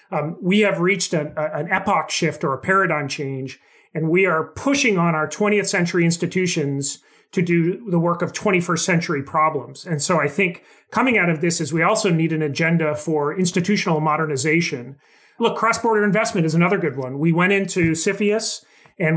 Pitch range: 155-185 Hz